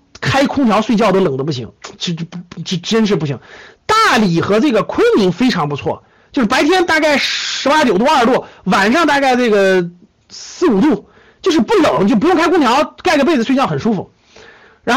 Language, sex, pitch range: Chinese, male, 180-265 Hz